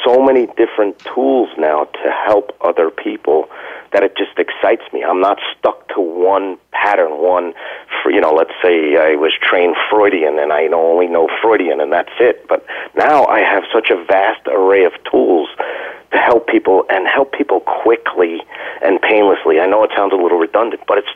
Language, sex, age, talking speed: English, male, 40-59, 185 wpm